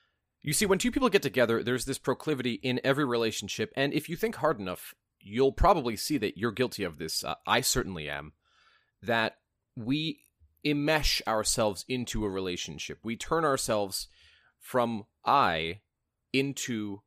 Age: 30-49